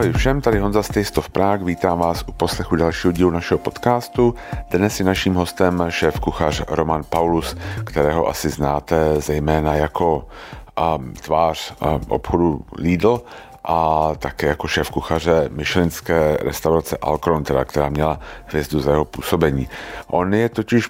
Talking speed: 145 wpm